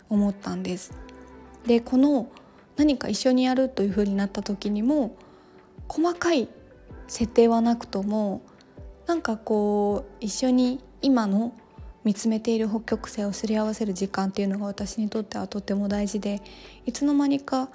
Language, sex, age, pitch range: Japanese, female, 20-39, 205-255 Hz